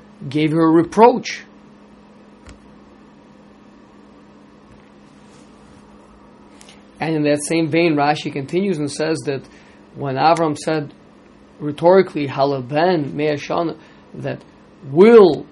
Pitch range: 145-170 Hz